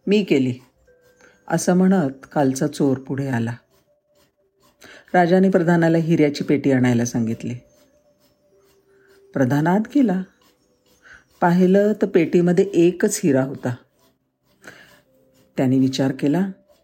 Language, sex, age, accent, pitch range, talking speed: Marathi, female, 50-69, native, 130-185 Hz, 90 wpm